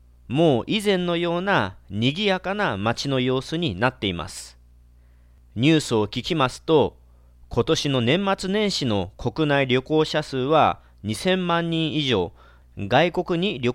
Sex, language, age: male, Japanese, 40-59